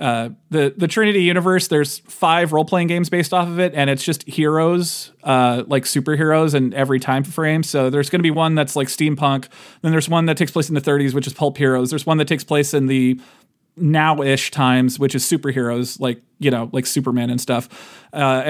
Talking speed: 215 wpm